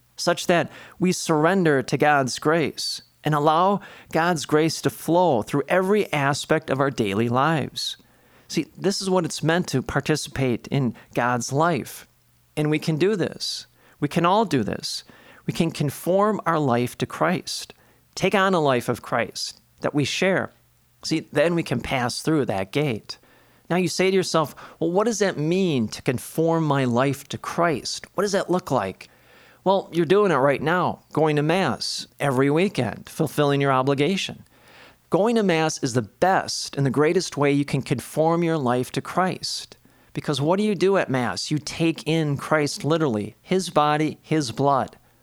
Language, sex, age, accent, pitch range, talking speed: English, male, 40-59, American, 135-175 Hz, 175 wpm